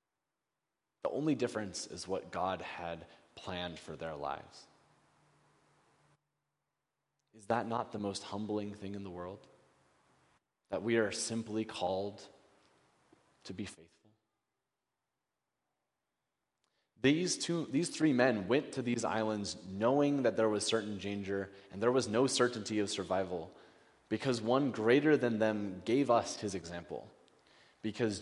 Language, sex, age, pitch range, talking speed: English, male, 20-39, 100-125 Hz, 130 wpm